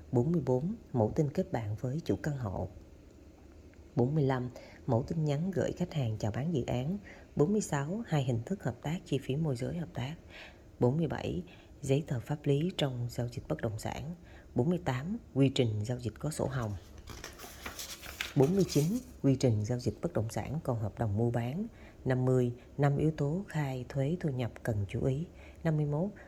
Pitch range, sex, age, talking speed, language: 115-150 Hz, female, 30-49, 175 wpm, Vietnamese